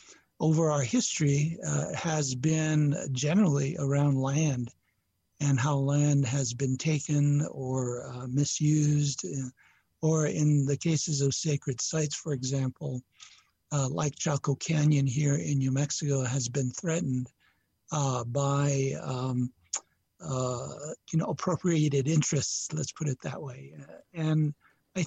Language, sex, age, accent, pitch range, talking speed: English, male, 60-79, American, 140-160 Hz, 125 wpm